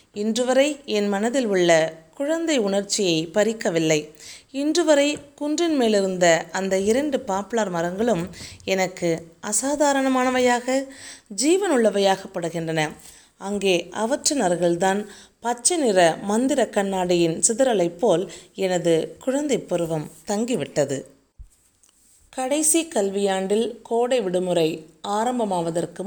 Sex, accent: female, native